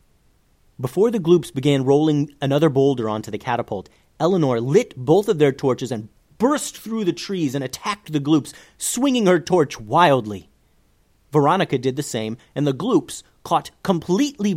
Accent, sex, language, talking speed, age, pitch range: American, male, English, 155 wpm, 30-49, 130-180 Hz